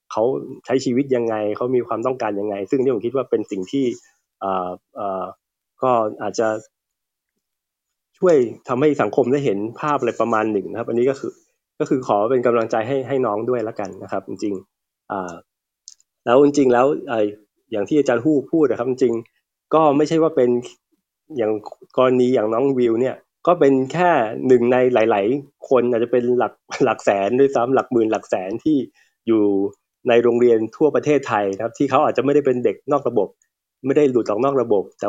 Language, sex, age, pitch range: Thai, male, 20-39, 110-135 Hz